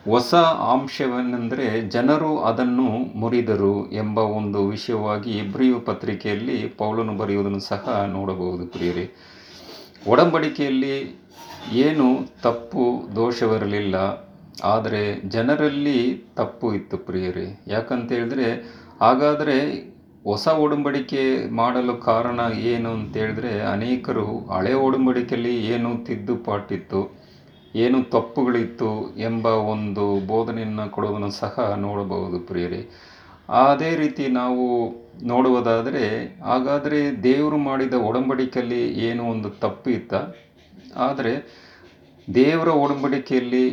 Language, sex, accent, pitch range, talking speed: Kannada, male, native, 105-130 Hz, 80 wpm